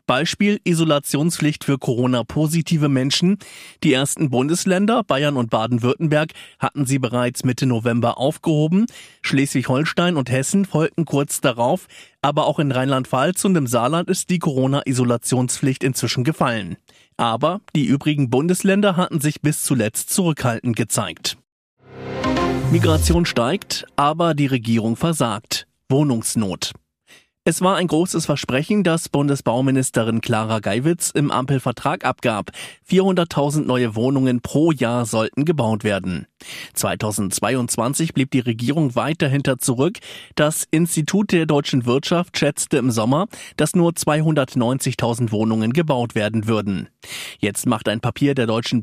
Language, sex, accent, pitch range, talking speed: German, male, German, 120-160 Hz, 125 wpm